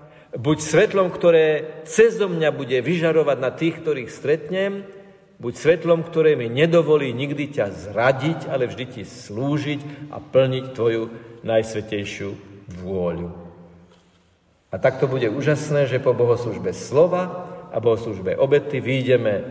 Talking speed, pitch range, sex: 120 wpm, 110-155 Hz, male